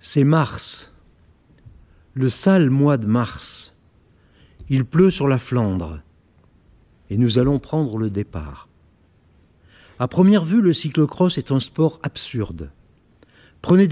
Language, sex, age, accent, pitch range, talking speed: French, male, 60-79, French, 110-160 Hz, 120 wpm